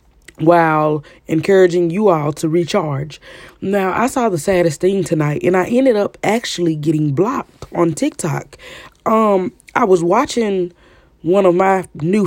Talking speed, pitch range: 145 wpm, 155-195 Hz